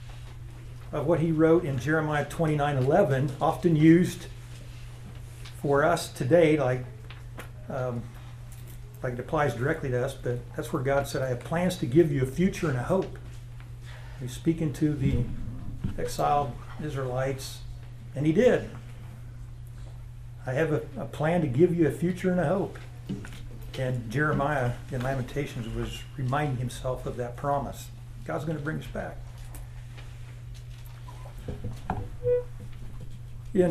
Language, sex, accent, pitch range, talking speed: English, male, American, 120-155 Hz, 135 wpm